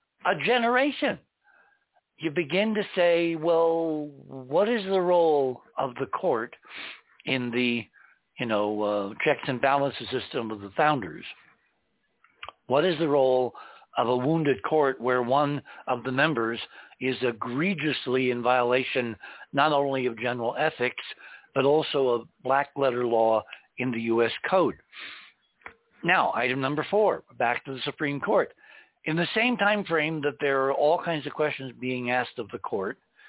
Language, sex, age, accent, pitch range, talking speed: English, male, 60-79, American, 120-160 Hz, 150 wpm